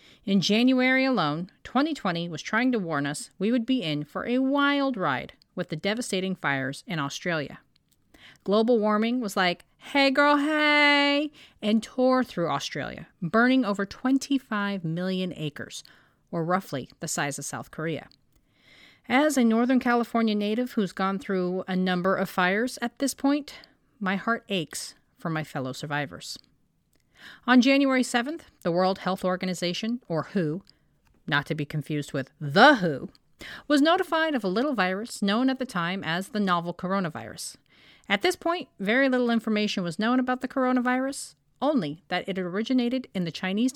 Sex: female